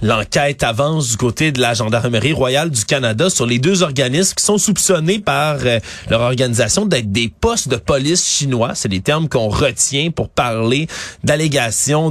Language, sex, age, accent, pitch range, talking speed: French, male, 30-49, Canadian, 120-175 Hz, 175 wpm